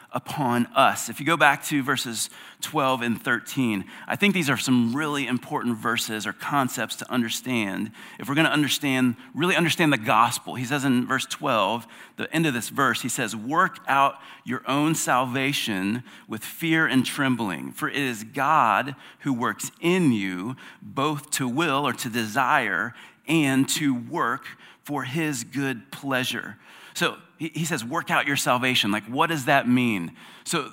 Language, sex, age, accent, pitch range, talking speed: English, male, 40-59, American, 125-150 Hz, 170 wpm